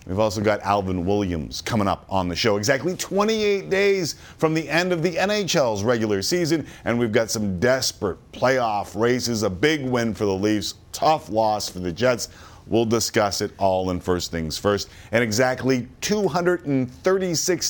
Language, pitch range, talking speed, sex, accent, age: English, 90-130 Hz, 170 wpm, male, American, 40-59